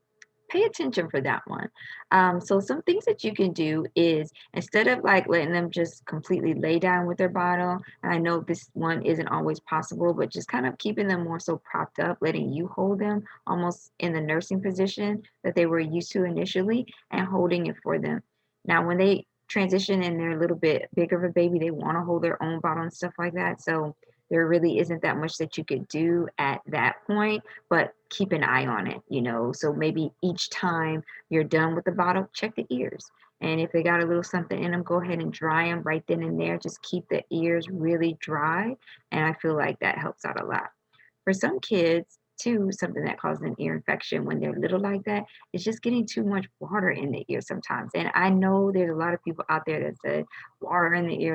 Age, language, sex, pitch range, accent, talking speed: 20-39, English, female, 160-190 Hz, American, 230 wpm